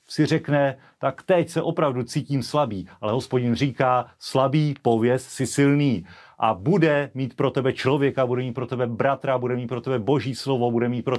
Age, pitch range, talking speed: 40-59, 120-150 Hz, 190 wpm